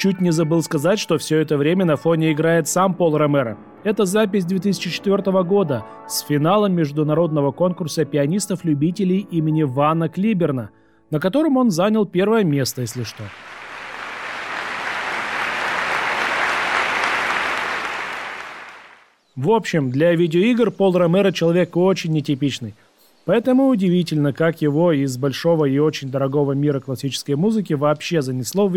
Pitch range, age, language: 145-195 Hz, 30-49, Russian